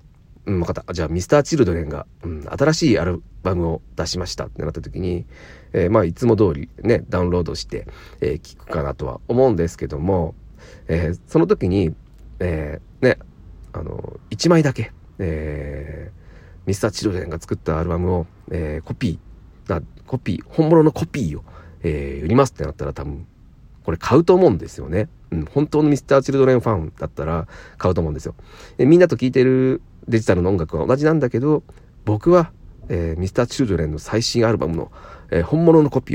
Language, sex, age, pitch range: Japanese, male, 40-59, 80-125 Hz